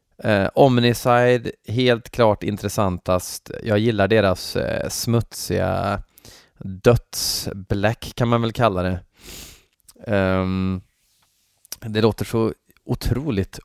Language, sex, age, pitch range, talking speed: Swedish, male, 20-39, 95-120 Hz, 90 wpm